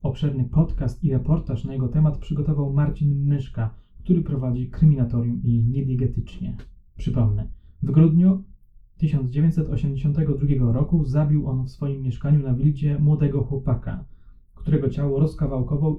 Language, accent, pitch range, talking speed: Polish, native, 115-150 Hz, 120 wpm